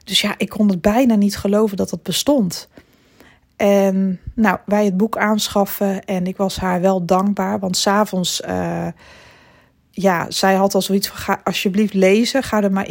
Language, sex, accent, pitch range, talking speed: Dutch, female, Dutch, 185-220 Hz, 175 wpm